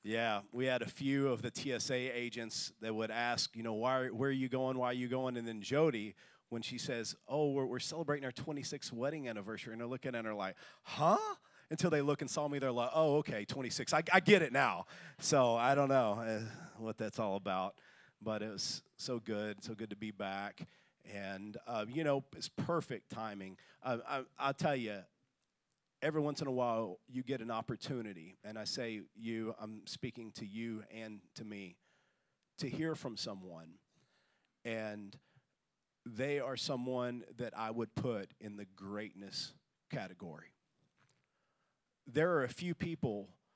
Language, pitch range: English, 110-135 Hz